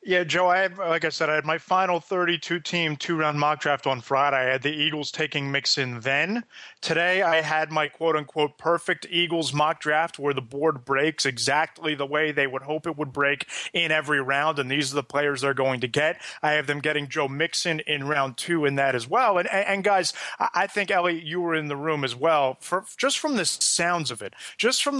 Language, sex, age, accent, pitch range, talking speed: English, male, 30-49, American, 145-165 Hz, 225 wpm